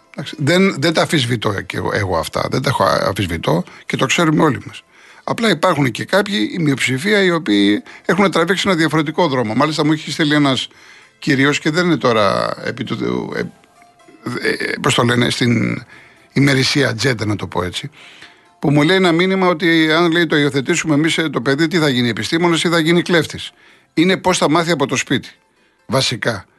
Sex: male